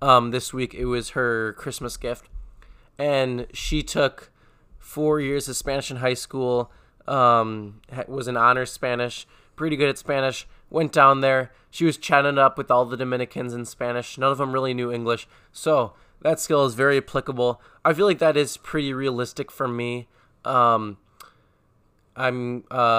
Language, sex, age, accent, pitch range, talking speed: English, male, 20-39, American, 120-140 Hz, 165 wpm